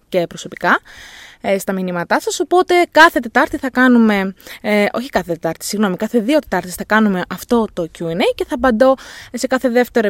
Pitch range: 185-260 Hz